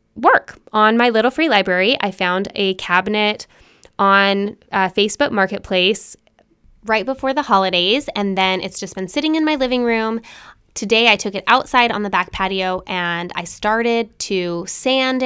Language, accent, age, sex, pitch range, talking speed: English, American, 10-29, female, 190-250 Hz, 165 wpm